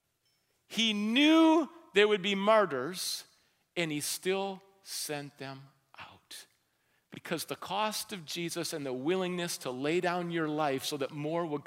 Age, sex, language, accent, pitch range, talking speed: 50-69, male, English, American, 170-240 Hz, 150 wpm